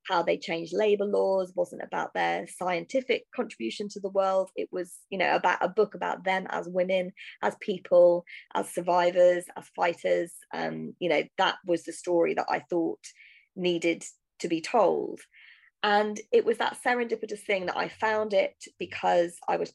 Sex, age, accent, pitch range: female, 20-39, British, 170-215 Hz